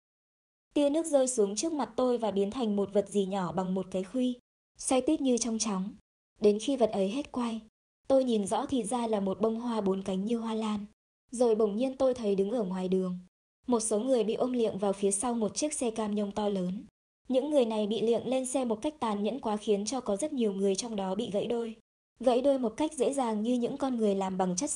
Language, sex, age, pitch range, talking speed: Vietnamese, male, 20-39, 200-255 Hz, 250 wpm